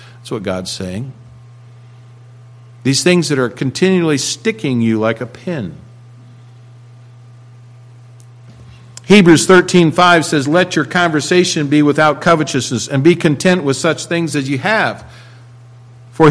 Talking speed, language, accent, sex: 120 wpm, English, American, male